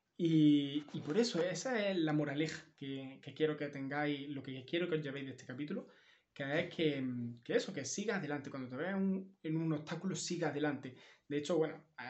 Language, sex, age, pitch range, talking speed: Spanish, male, 20-39, 135-165 Hz, 215 wpm